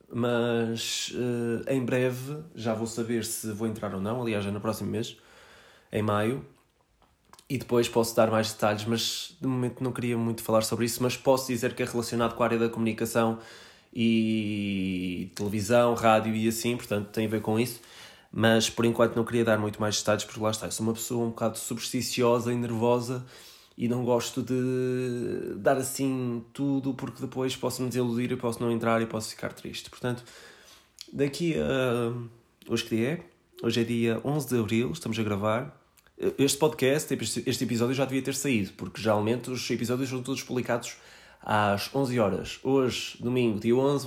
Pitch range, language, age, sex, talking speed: 110-125 Hz, Portuguese, 20-39, male, 180 wpm